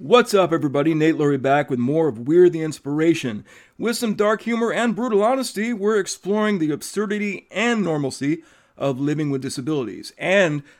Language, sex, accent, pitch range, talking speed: English, male, American, 145-200 Hz, 165 wpm